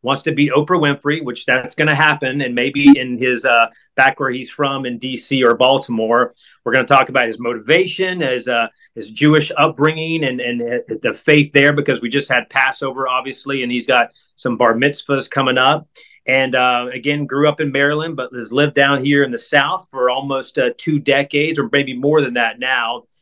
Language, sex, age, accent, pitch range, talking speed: English, male, 30-49, American, 125-150 Hz, 205 wpm